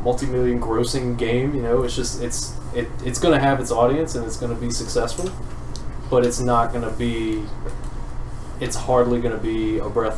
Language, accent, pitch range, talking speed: English, American, 105-120 Hz, 175 wpm